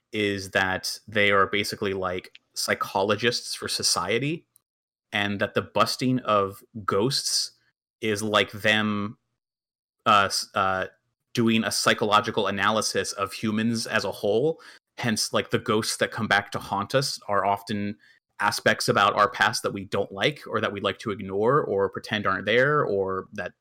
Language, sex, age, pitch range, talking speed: English, male, 30-49, 95-115 Hz, 160 wpm